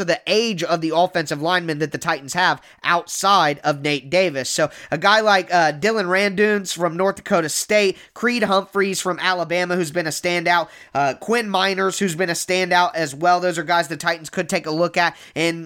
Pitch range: 165-185 Hz